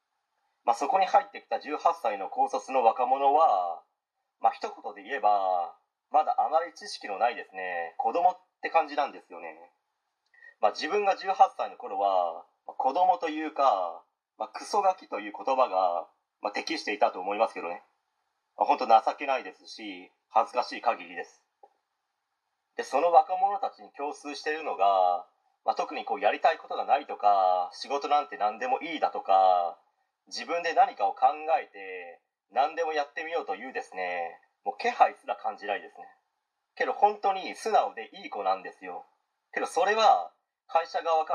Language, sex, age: Japanese, male, 30-49